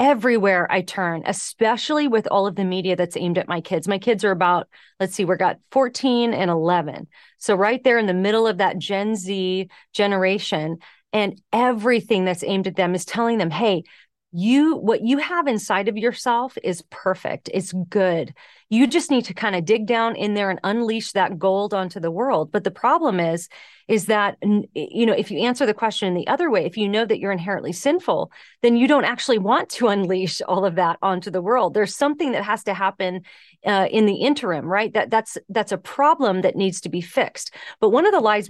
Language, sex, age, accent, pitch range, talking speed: English, female, 30-49, American, 185-230 Hz, 215 wpm